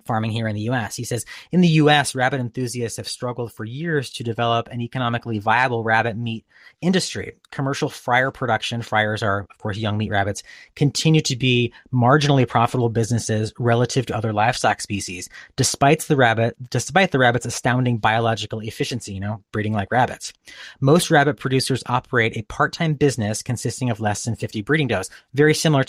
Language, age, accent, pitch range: English, 30-49, American, 110-140 Hz